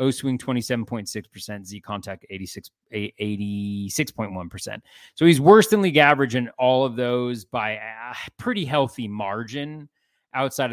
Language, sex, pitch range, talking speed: English, male, 105-140 Hz, 130 wpm